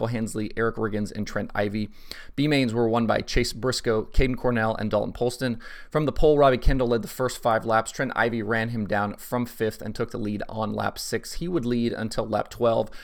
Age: 30-49